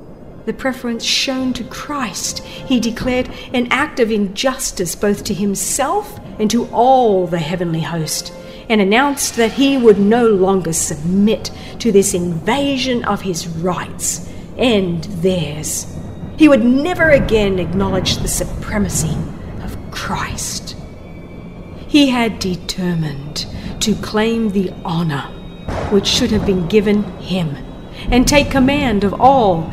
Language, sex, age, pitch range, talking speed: English, female, 50-69, 180-250 Hz, 125 wpm